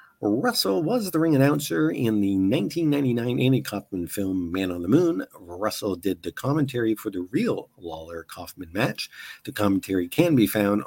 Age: 50-69